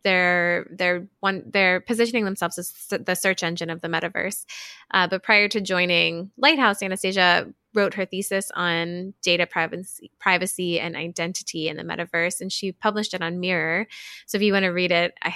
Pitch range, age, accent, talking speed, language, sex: 175-200 Hz, 20-39, American, 180 wpm, English, female